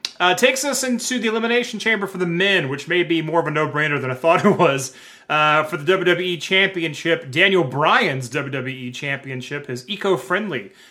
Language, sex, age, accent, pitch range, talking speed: English, male, 30-49, American, 130-180 Hz, 180 wpm